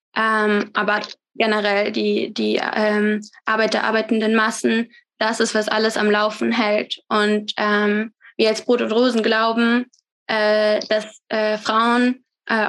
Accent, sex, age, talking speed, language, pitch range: German, female, 20-39, 135 wpm, German, 210-225 Hz